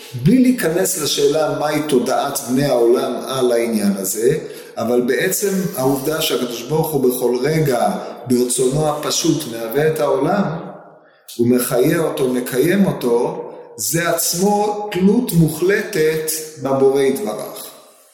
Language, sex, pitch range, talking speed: Hebrew, male, 120-170 Hz, 115 wpm